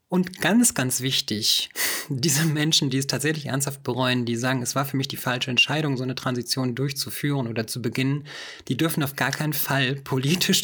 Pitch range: 125-145 Hz